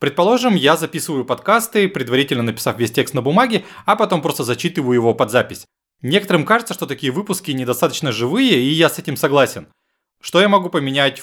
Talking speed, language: 175 wpm, Russian